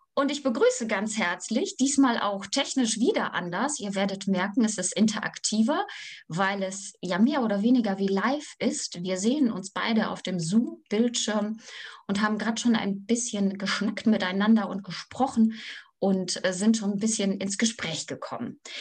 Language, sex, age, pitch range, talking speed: German, female, 20-39, 195-255 Hz, 160 wpm